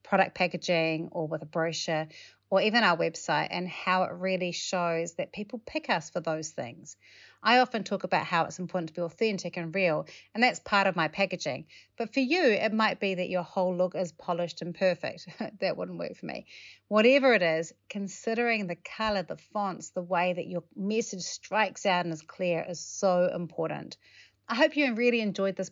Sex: female